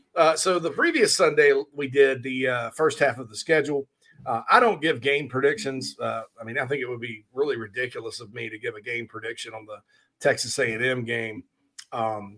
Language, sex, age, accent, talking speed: English, male, 40-59, American, 220 wpm